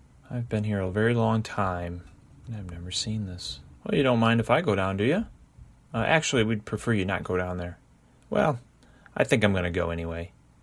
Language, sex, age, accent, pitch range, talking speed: English, male, 30-49, American, 90-115 Hz, 220 wpm